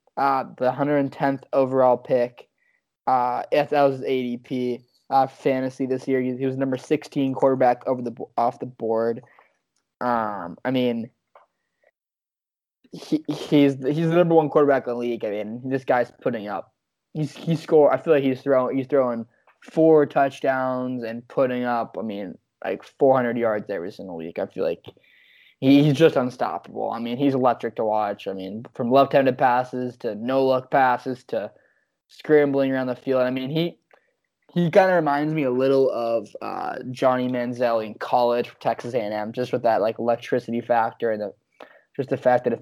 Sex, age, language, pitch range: male, 20-39, English, 120-140 Hz